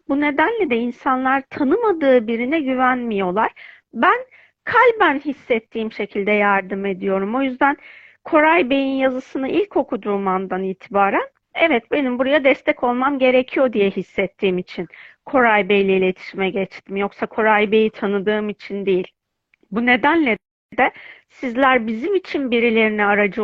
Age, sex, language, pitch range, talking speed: 40-59, female, Turkish, 210-280 Hz, 125 wpm